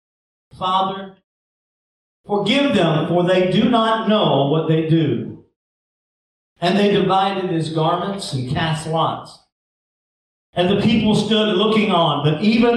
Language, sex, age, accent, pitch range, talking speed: English, male, 50-69, American, 160-210 Hz, 125 wpm